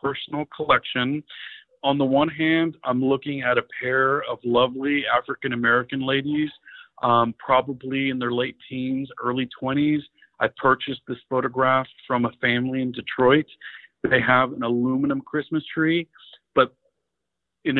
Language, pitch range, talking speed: English, 130-150 Hz, 135 wpm